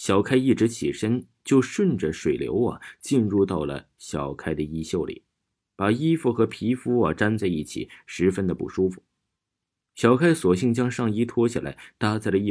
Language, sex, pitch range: Chinese, male, 95-140 Hz